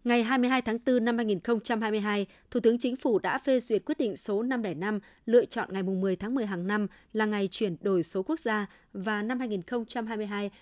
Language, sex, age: Vietnamese, female, 20-39